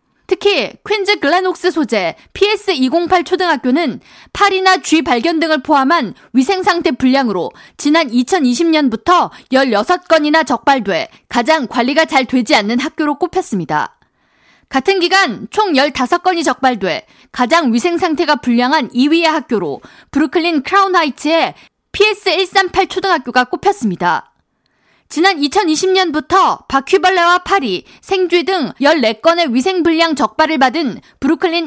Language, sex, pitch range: Korean, female, 265-365 Hz